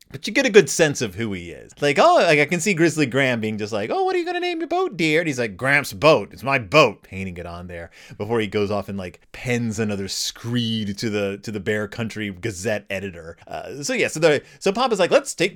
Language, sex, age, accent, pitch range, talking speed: English, male, 30-49, American, 115-185 Hz, 265 wpm